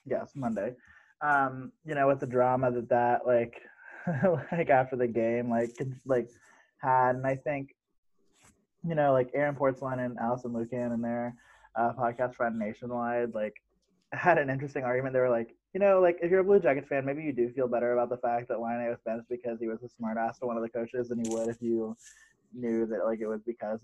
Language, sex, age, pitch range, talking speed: English, male, 20-39, 115-130 Hz, 220 wpm